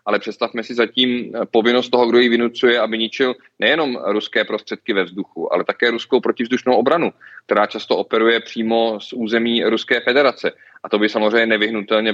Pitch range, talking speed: 105-120 Hz, 170 wpm